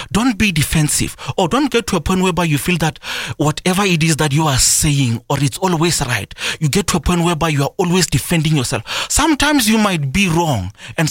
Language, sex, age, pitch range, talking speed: English, male, 30-49, 145-195 Hz, 220 wpm